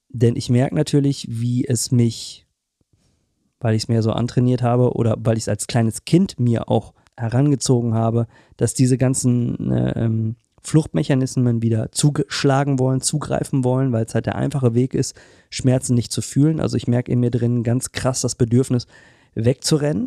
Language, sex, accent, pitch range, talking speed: German, male, German, 115-135 Hz, 175 wpm